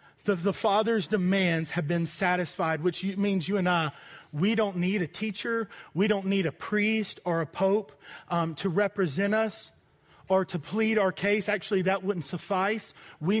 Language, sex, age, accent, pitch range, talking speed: English, male, 30-49, American, 170-210 Hz, 180 wpm